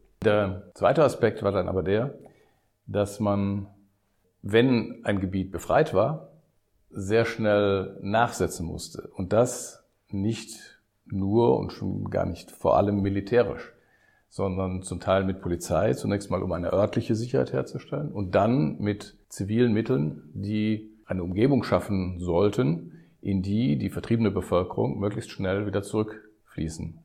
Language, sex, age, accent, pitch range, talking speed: German, male, 50-69, German, 95-110 Hz, 135 wpm